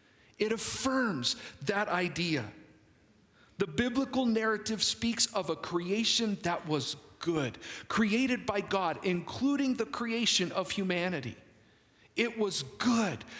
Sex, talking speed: male, 110 wpm